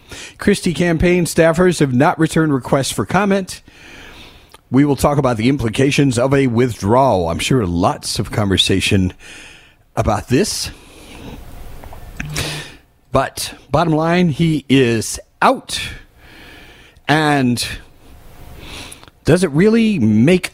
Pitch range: 120-165 Hz